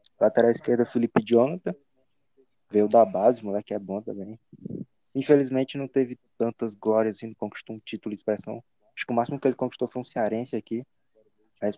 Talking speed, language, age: 190 wpm, Portuguese, 20-39